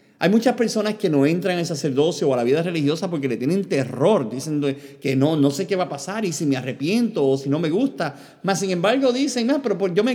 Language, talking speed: Spanish, 260 wpm